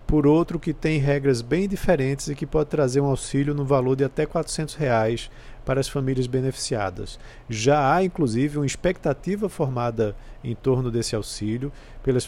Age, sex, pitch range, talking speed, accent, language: 50-69, male, 120-160 Hz, 165 wpm, Brazilian, Portuguese